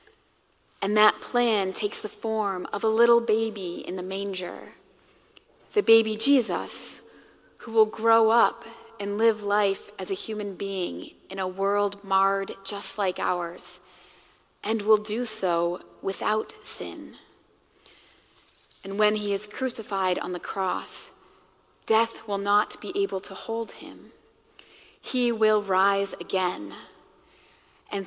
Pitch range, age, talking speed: 190-225 Hz, 30-49, 130 wpm